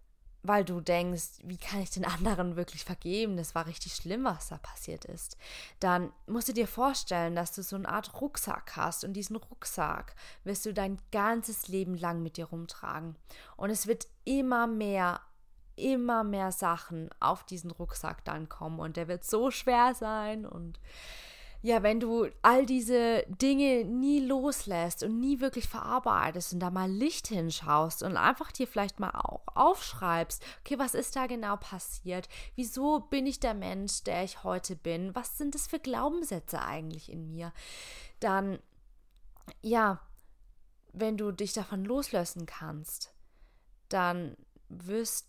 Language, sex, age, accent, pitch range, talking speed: English, female, 20-39, German, 170-230 Hz, 160 wpm